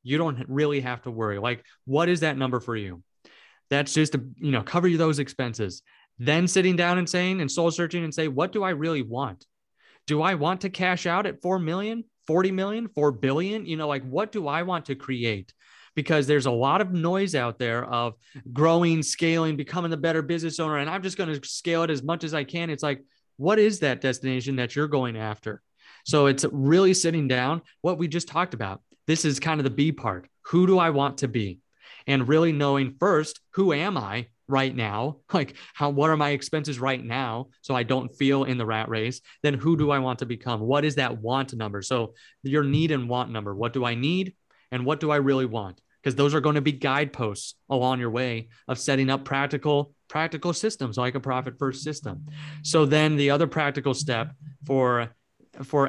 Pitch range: 130-160 Hz